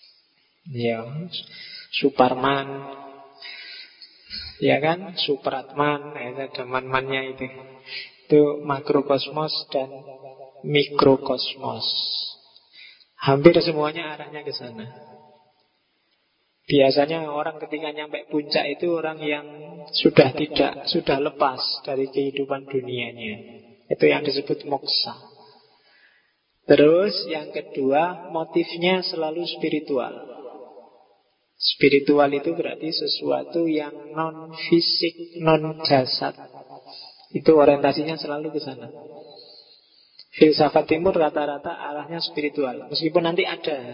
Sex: male